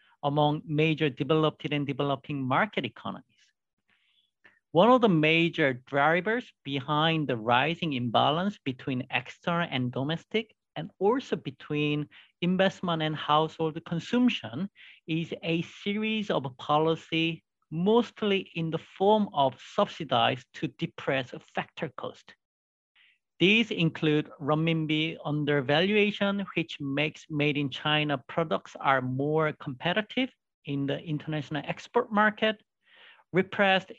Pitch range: 145-190 Hz